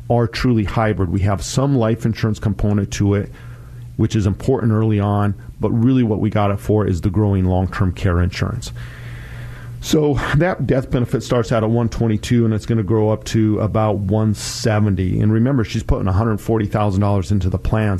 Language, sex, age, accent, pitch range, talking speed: English, male, 40-59, American, 100-120 Hz, 180 wpm